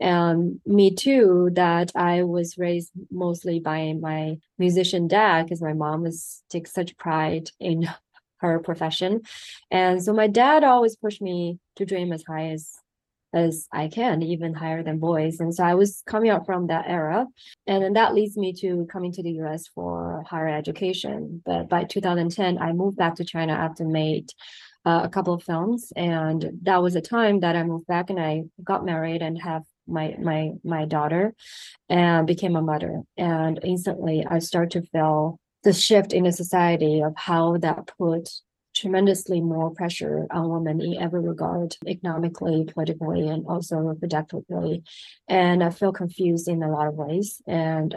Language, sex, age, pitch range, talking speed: English, female, 20-39, 160-185 Hz, 175 wpm